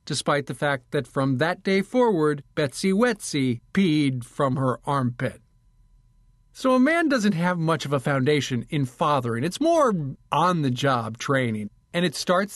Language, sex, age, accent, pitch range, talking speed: English, male, 50-69, American, 130-185 Hz, 155 wpm